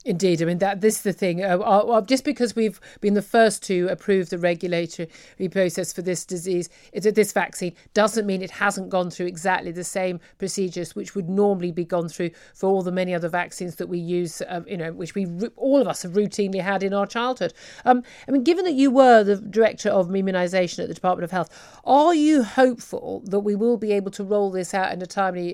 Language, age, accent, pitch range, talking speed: English, 50-69, British, 180-215 Hz, 230 wpm